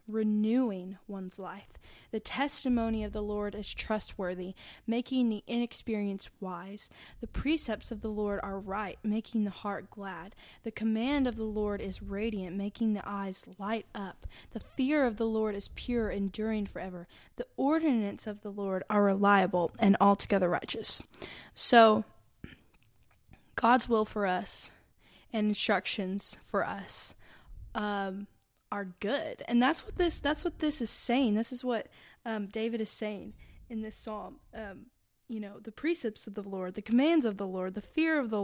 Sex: female